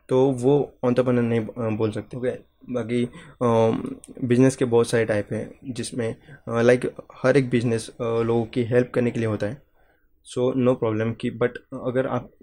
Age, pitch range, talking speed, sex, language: 20-39, 110-125 Hz, 165 wpm, male, English